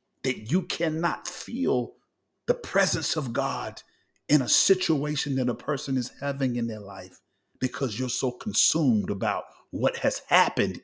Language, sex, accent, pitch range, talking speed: English, male, American, 130-165 Hz, 150 wpm